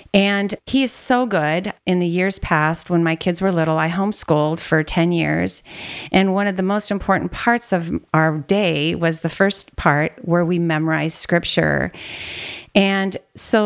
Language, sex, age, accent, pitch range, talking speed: English, female, 40-59, American, 160-195 Hz, 170 wpm